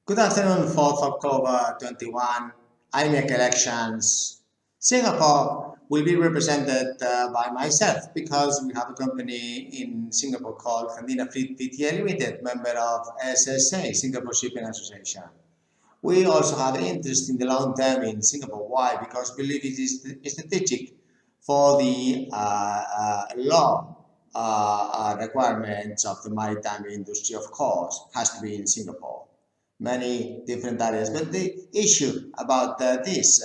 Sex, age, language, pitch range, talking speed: male, 50-69, English, 115-140 Hz, 140 wpm